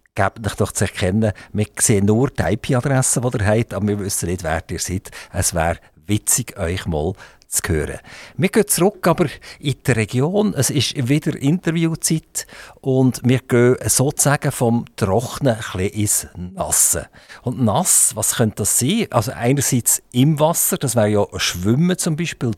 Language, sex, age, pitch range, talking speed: German, male, 50-69, 100-140 Hz, 165 wpm